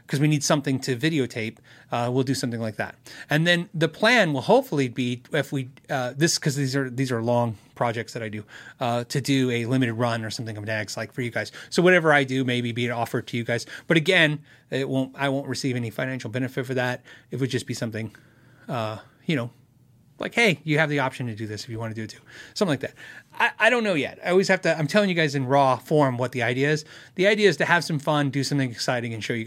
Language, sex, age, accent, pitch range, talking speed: English, male, 30-49, American, 125-175 Hz, 265 wpm